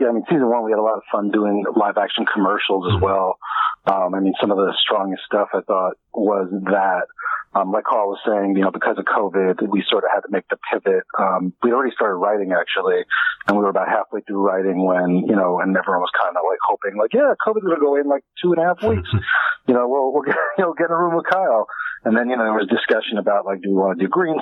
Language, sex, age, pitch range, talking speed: English, male, 40-59, 100-130 Hz, 275 wpm